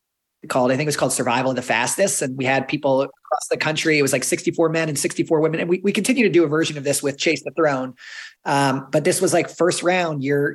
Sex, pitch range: male, 135-165 Hz